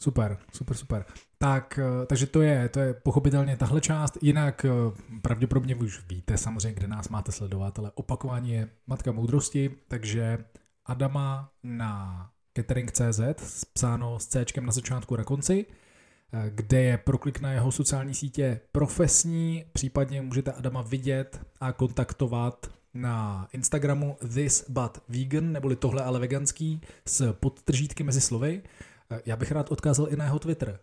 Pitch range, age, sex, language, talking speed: 115-140 Hz, 20-39, male, Czech, 135 wpm